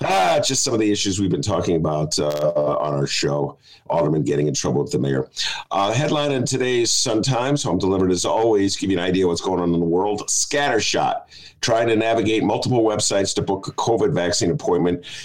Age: 50-69